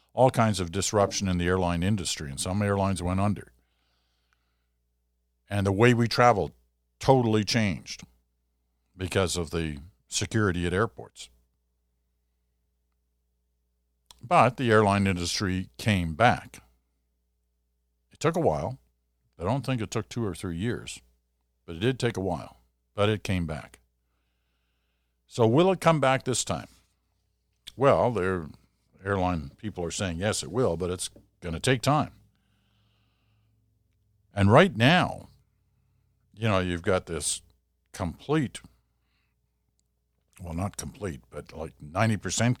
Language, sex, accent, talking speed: English, male, American, 130 wpm